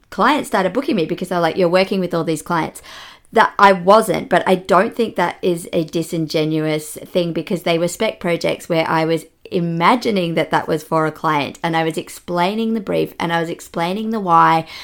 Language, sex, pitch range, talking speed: English, female, 160-185 Hz, 210 wpm